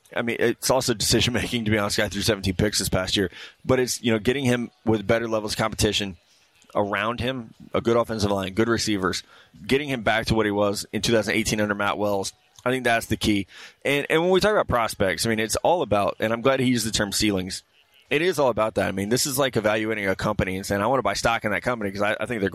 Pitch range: 105-120 Hz